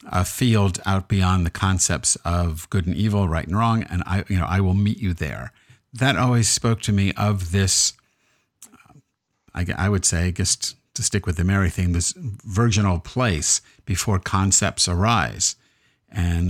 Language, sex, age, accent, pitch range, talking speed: English, male, 50-69, American, 95-115 Hz, 170 wpm